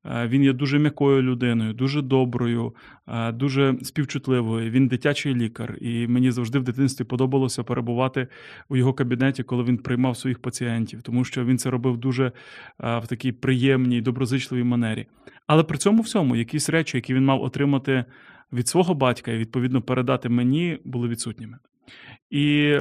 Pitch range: 125-145 Hz